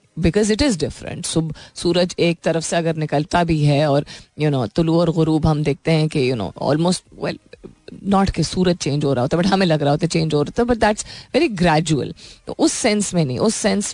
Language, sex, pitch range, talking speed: Hindi, female, 155-195 Hz, 255 wpm